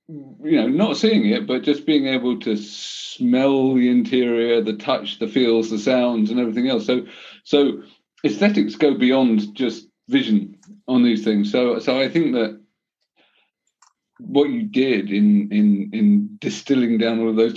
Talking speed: 165 wpm